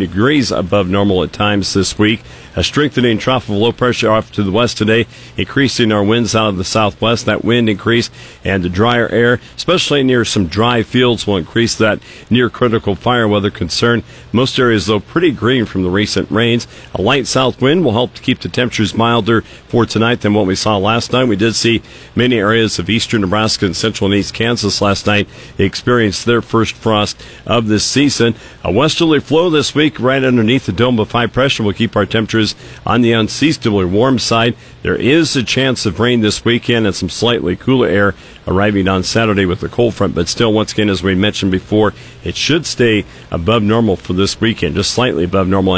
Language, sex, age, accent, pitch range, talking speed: English, male, 50-69, American, 105-120 Hz, 205 wpm